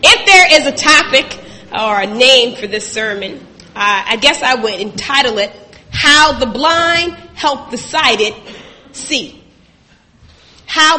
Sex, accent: female, American